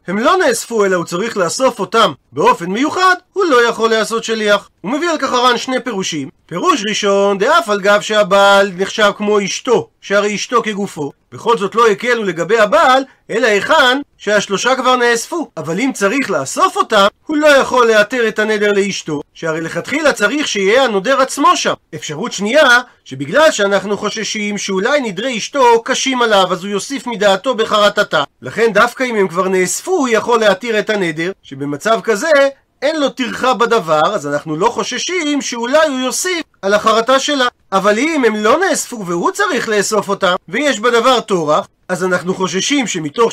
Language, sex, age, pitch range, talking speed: Hebrew, male, 40-59, 200-265 Hz, 170 wpm